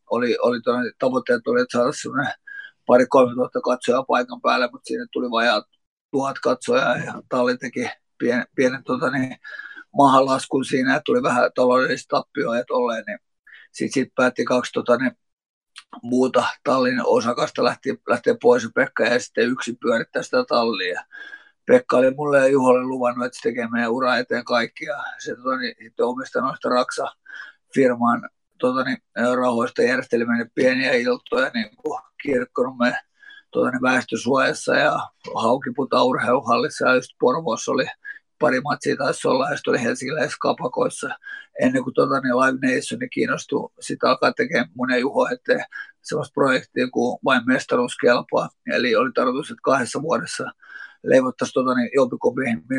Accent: native